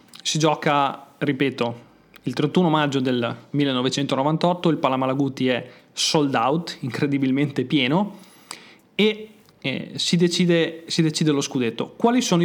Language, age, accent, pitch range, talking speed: Italian, 30-49, native, 140-175 Hz, 115 wpm